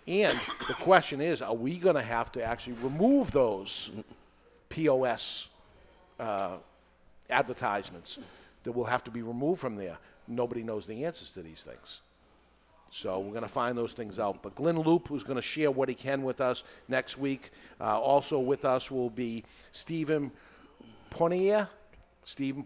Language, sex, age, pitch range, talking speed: English, male, 50-69, 110-145 Hz, 165 wpm